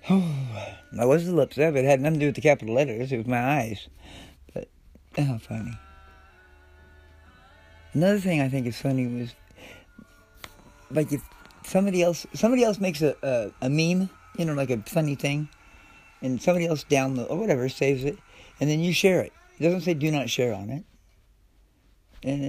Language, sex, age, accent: English, male, 50-69, American